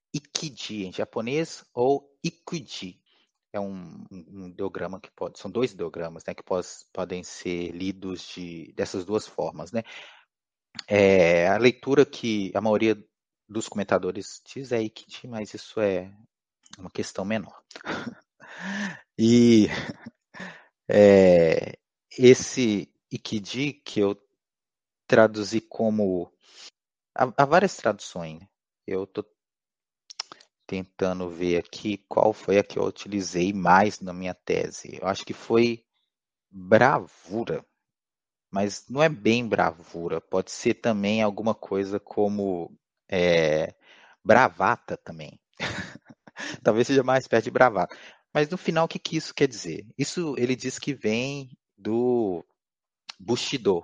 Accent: Brazilian